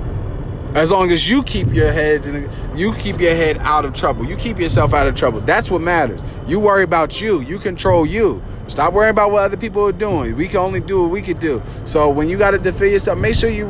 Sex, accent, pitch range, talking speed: male, American, 145-190 Hz, 240 wpm